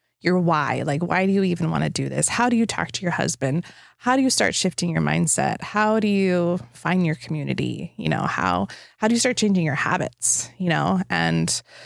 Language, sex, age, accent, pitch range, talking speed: English, female, 20-39, American, 170-205 Hz, 225 wpm